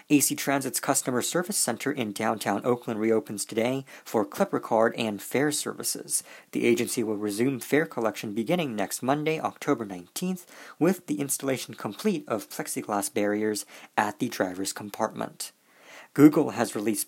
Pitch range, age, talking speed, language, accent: 110-150 Hz, 40-59, 145 wpm, English, American